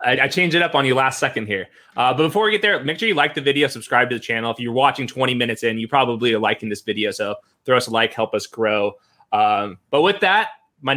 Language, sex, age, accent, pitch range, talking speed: English, male, 20-39, American, 120-145 Hz, 275 wpm